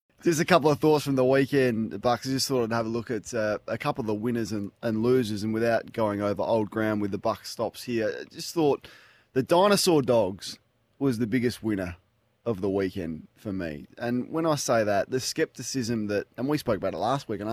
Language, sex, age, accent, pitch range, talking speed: English, male, 20-39, Australian, 105-130 Hz, 235 wpm